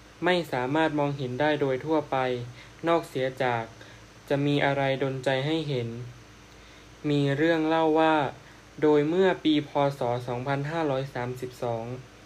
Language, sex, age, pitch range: Thai, male, 20-39, 120-145 Hz